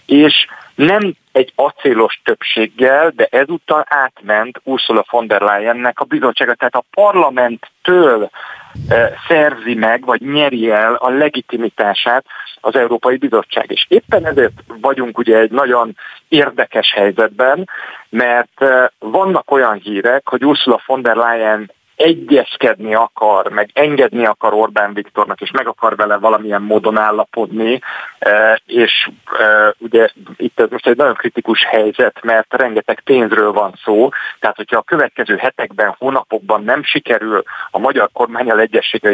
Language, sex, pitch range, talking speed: Hungarian, male, 110-140 Hz, 130 wpm